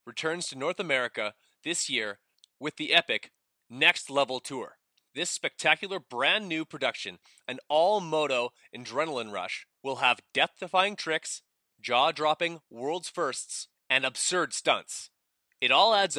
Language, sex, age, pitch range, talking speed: English, male, 30-49, 135-185 Hz, 130 wpm